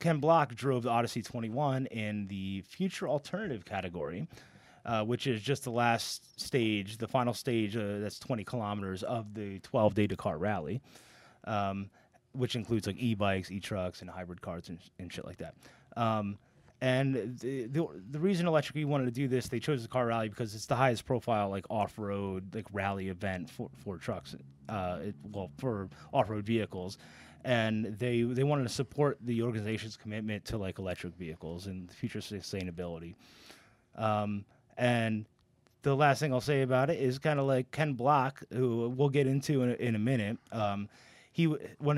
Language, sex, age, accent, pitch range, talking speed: English, male, 20-39, American, 100-130 Hz, 175 wpm